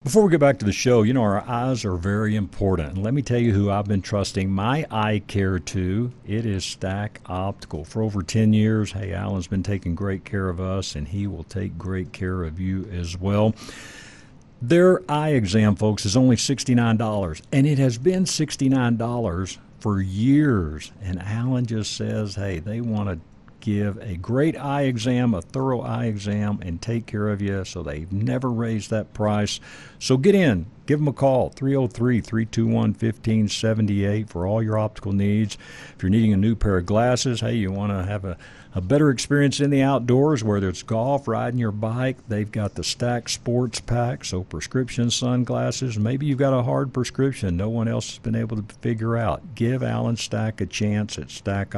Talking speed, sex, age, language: 190 wpm, male, 60-79, English